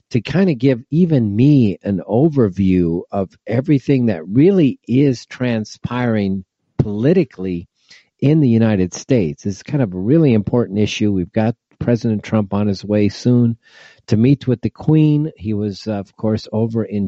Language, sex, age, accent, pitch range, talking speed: English, male, 50-69, American, 100-130 Hz, 160 wpm